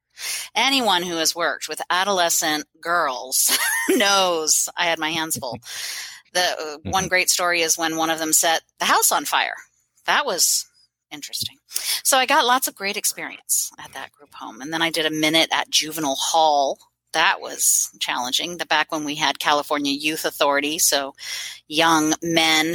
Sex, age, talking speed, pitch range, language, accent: female, 40-59, 170 wpm, 155-200 Hz, English, American